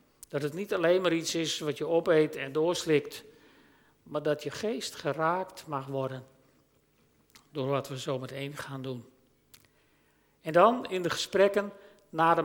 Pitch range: 145-200 Hz